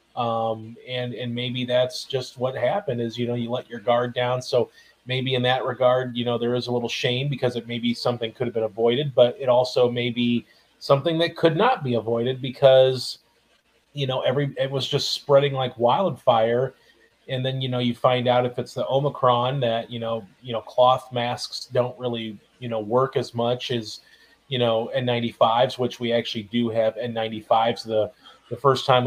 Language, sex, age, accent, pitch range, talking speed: English, male, 30-49, American, 120-130 Hz, 200 wpm